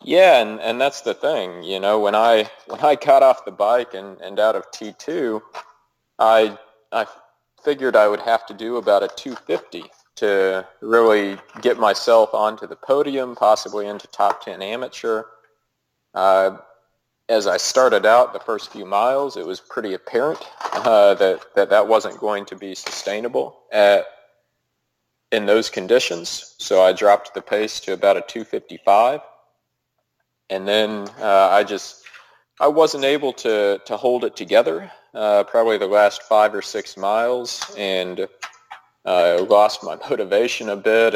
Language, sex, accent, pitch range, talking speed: Danish, male, American, 100-125 Hz, 155 wpm